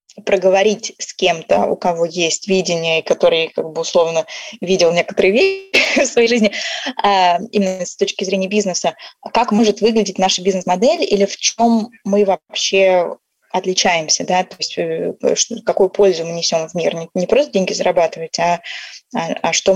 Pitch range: 175-220 Hz